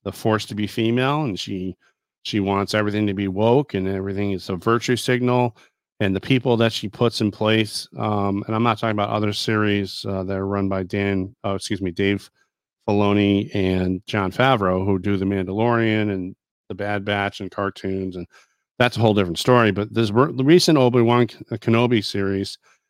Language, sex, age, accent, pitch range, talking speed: English, male, 40-59, American, 95-115 Hz, 195 wpm